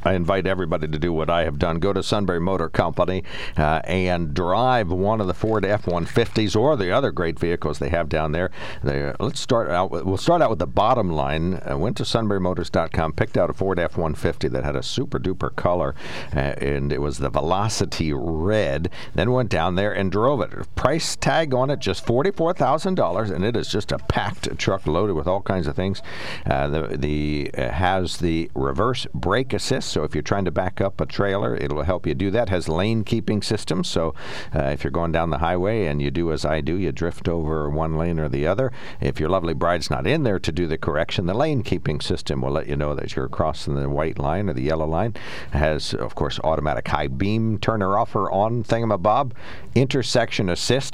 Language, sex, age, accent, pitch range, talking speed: English, male, 60-79, American, 80-105 Hz, 215 wpm